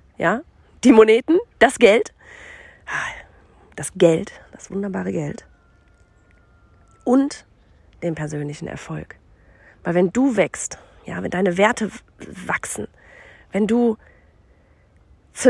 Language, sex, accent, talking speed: German, female, German, 100 wpm